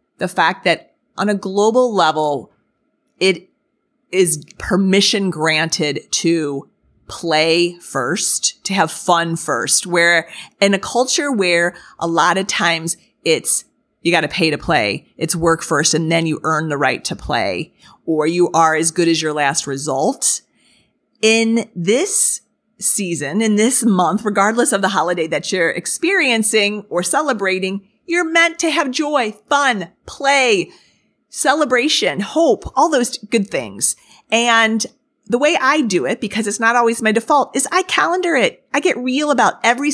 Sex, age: female, 30-49